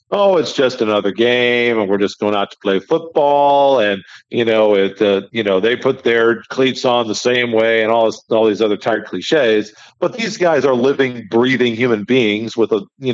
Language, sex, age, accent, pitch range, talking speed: English, male, 50-69, American, 115-135 Hz, 215 wpm